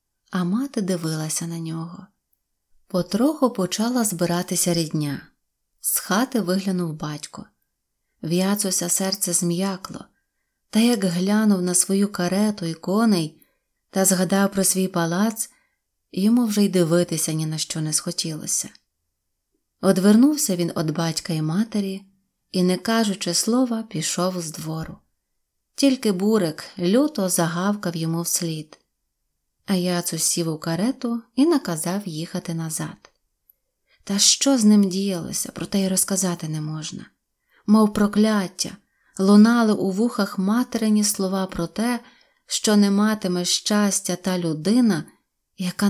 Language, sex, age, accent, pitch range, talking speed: Ukrainian, female, 20-39, native, 175-210 Hz, 120 wpm